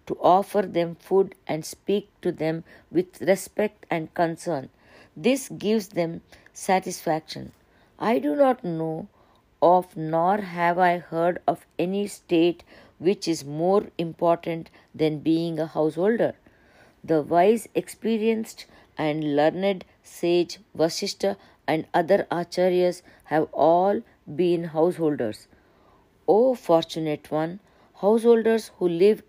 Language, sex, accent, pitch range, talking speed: English, female, Indian, 160-195 Hz, 115 wpm